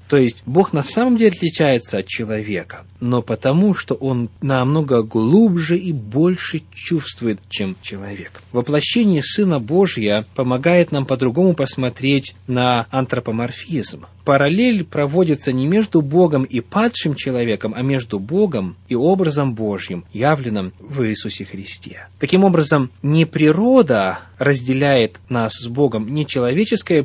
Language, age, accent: Russian, 30-49, native